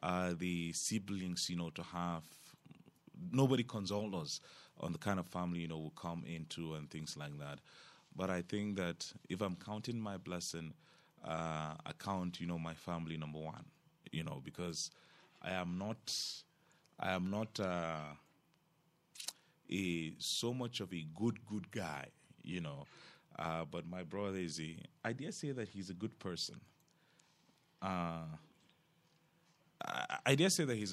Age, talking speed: 30-49, 165 wpm